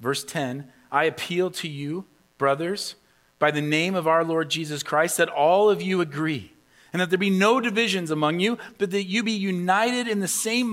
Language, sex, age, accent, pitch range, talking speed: English, male, 40-59, American, 150-205 Hz, 200 wpm